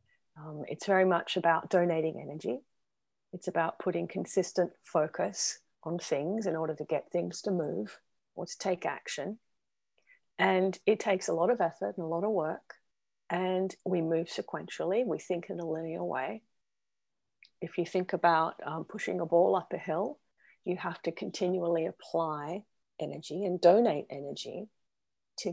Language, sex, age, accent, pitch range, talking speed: English, female, 40-59, Australian, 165-200 Hz, 160 wpm